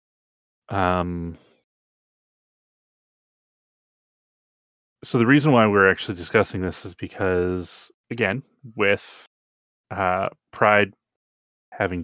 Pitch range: 90-110 Hz